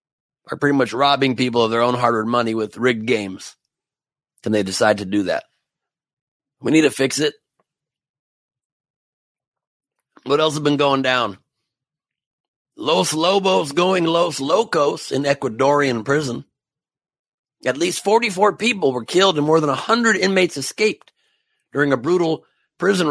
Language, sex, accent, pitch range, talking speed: English, male, American, 130-160 Hz, 140 wpm